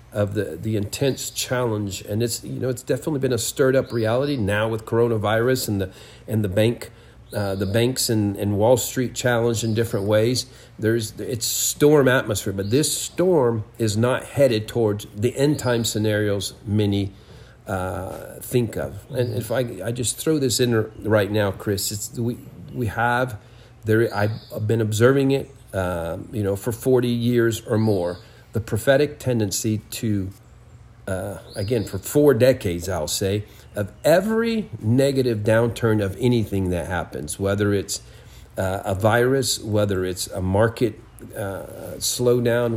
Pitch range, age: 105-125 Hz, 50-69